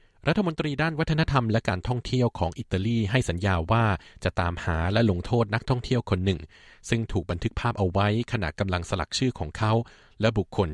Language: Thai